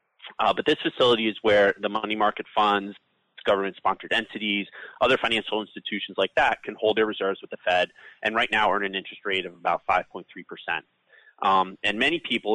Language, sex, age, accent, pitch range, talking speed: English, male, 30-49, American, 95-110 Hz, 180 wpm